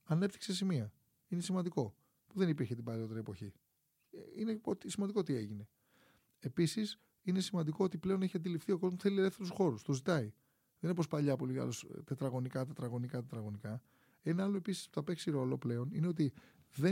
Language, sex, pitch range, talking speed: Greek, male, 130-190 Hz, 170 wpm